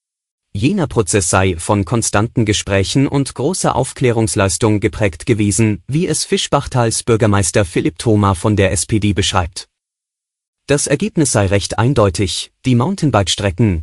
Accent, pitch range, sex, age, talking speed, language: German, 100-120 Hz, male, 30-49, 120 wpm, German